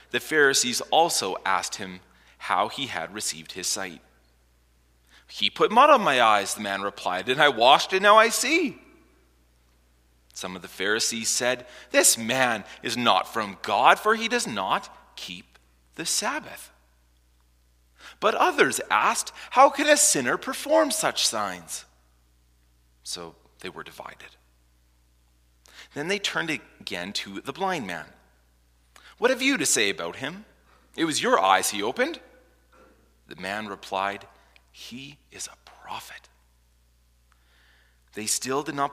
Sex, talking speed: male, 140 wpm